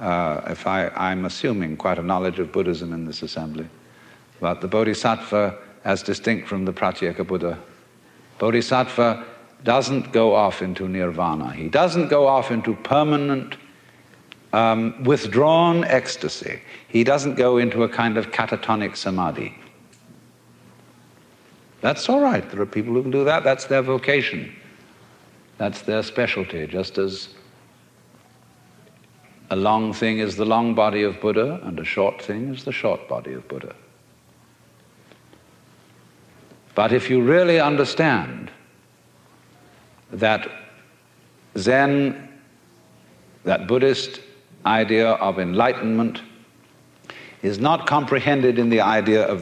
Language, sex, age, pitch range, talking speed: English, male, 60-79, 95-130 Hz, 125 wpm